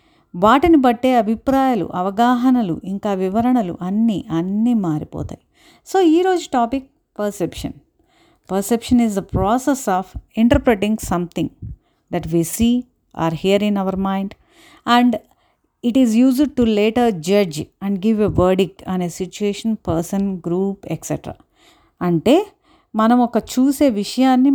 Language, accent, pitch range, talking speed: Telugu, native, 195-255 Hz, 120 wpm